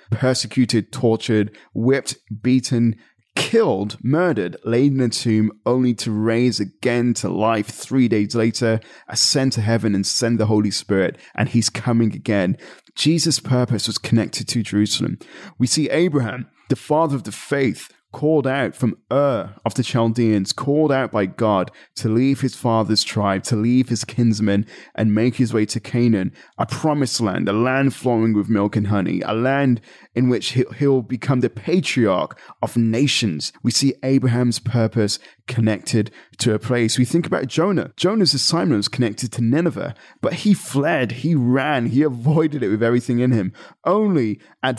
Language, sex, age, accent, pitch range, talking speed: English, male, 20-39, British, 110-135 Hz, 165 wpm